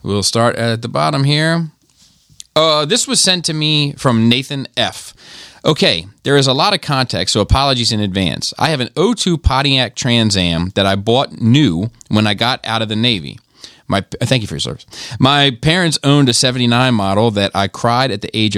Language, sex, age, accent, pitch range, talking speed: English, male, 30-49, American, 105-135 Hz, 200 wpm